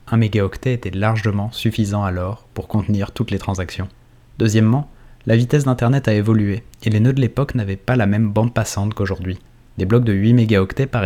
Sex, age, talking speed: male, 20-39, 190 wpm